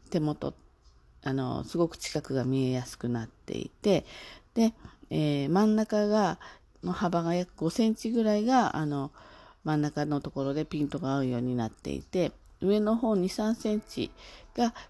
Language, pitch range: Japanese, 135-185 Hz